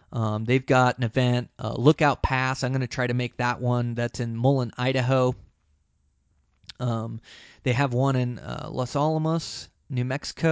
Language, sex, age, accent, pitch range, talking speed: English, male, 20-39, American, 115-140 Hz, 170 wpm